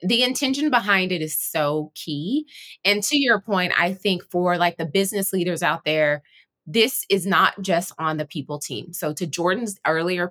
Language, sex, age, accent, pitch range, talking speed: English, female, 20-39, American, 160-210 Hz, 185 wpm